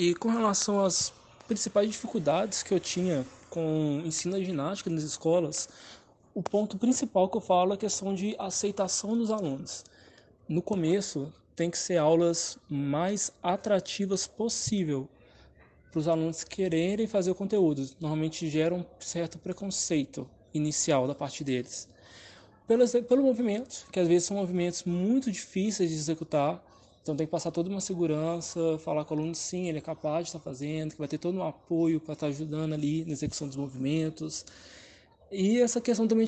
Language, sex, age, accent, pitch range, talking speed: Portuguese, male, 20-39, Brazilian, 155-205 Hz, 170 wpm